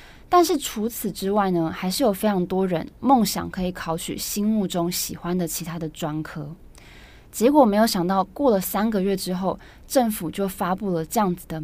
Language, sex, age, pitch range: Chinese, female, 20-39, 175-220 Hz